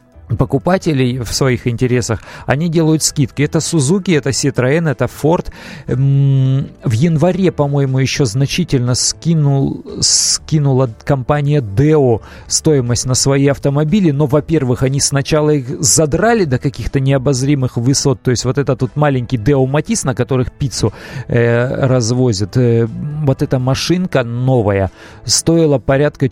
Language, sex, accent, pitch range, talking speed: Russian, male, native, 120-145 Hz, 130 wpm